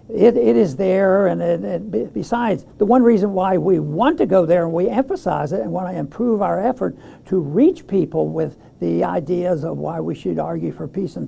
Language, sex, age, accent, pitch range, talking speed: English, male, 60-79, American, 185-235 Hz, 205 wpm